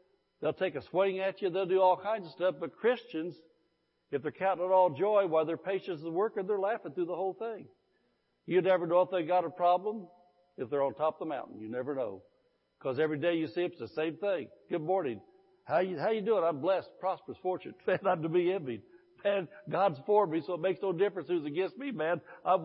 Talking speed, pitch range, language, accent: 235 wpm, 170-240 Hz, English, American